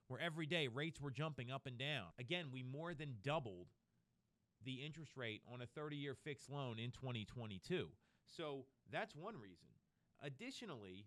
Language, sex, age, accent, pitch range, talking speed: English, male, 30-49, American, 120-160 Hz, 155 wpm